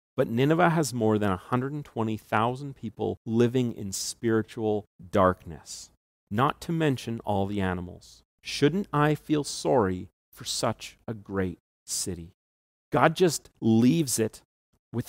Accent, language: American, English